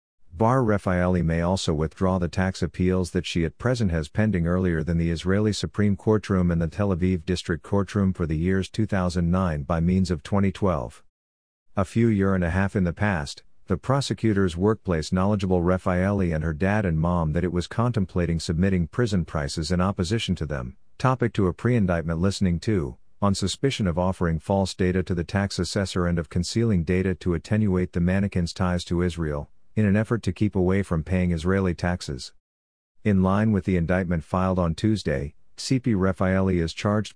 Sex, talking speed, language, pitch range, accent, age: male, 180 wpm, English, 85-100 Hz, American, 50-69